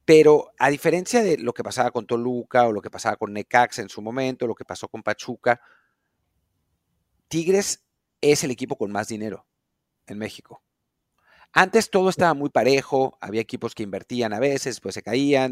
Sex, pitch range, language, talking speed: male, 110-145 Hz, Spanish, 180 wpm